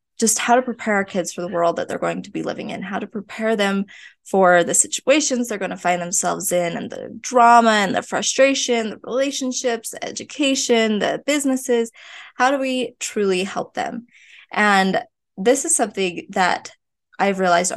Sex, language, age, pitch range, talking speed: female, English, 20-39, 185-240 Hz, 180 wpm